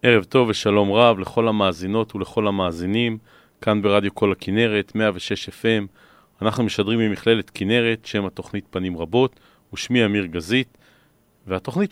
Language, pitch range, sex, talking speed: Hebrew, 100-120 Hz, male, 130 wpm